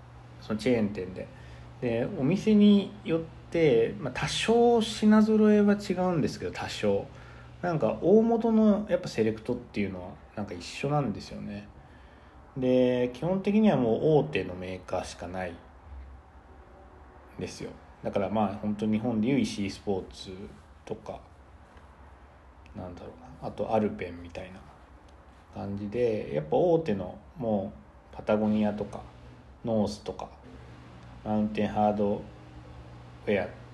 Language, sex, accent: Japanese, male, native